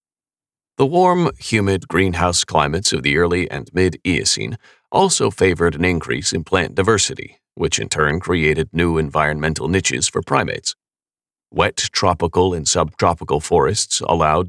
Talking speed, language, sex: 135 wpm, English, male